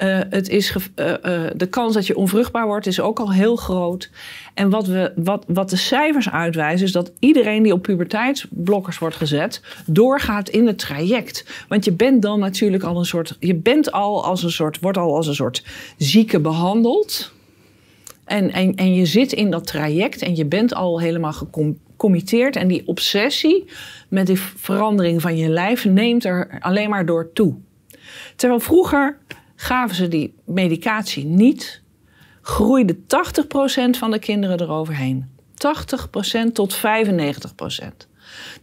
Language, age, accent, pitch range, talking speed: Dutch, 40-59, Dutch, 175-235 Hz, 145 wpm